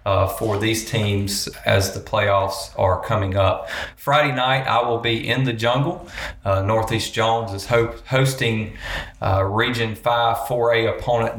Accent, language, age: American, English, 30-49